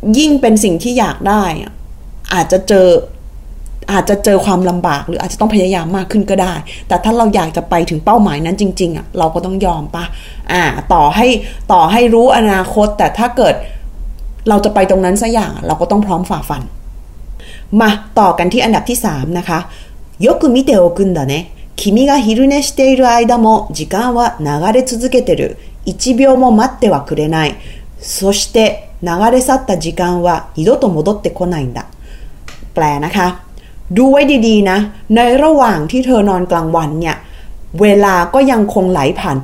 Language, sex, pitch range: Thai, female, 175-235 Hz